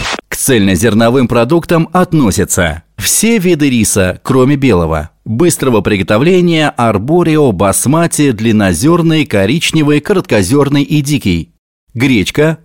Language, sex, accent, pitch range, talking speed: Russian, male, native, 100-155 Hz, 90 wpm